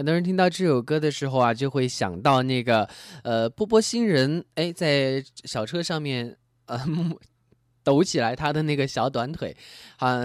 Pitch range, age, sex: 115-160 Hz, 20-39, male